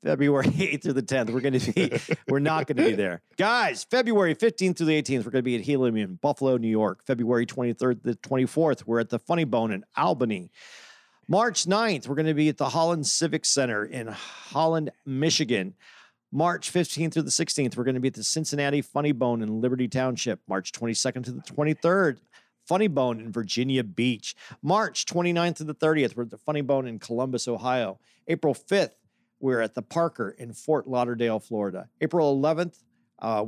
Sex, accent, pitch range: male, American, 120-160 Hz